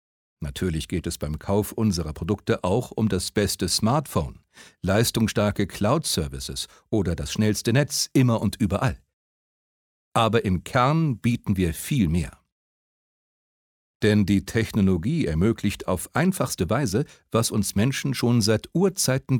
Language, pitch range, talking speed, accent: German, 95-125 Hz, 125 wpm, German